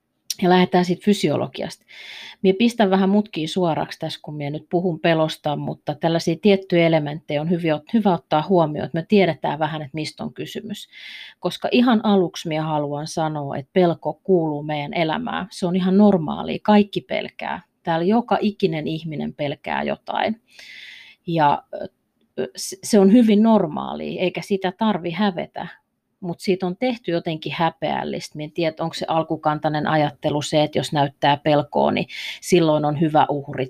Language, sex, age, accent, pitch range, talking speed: Finnish, female, 30-49, native, 150-185 Hz, 150 wpm